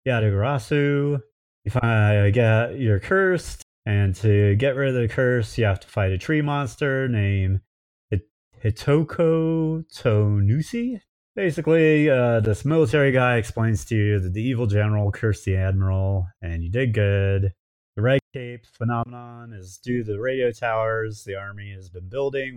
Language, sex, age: English, male, 30-49